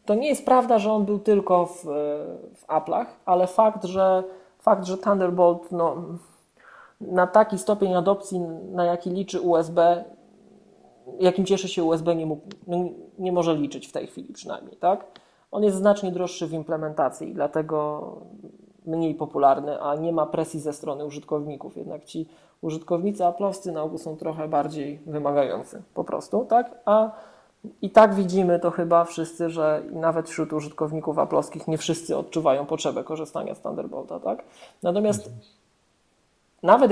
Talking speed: 150 wpm